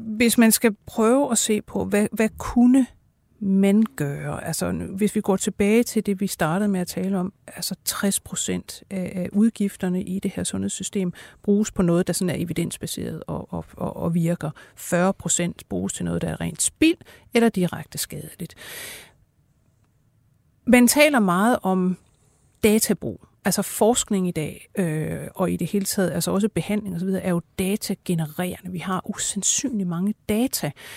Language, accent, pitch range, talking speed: Danish, native, 175-215 Hz, 155 wpm